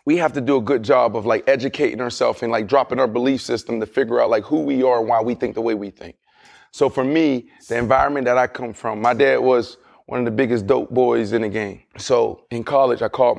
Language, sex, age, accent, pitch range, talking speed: English, male, 20-39, American, 130-205 Hz, 260 wpm